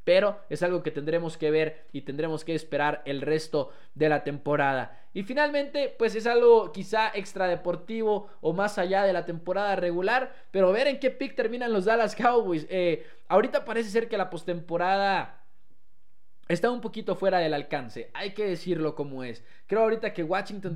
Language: English